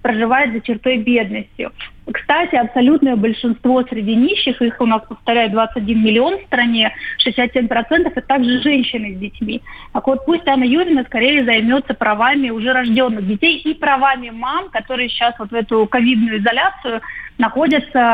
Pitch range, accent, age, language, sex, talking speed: 230-275 Hz, native, 30-49, Russian, female, 150 wpm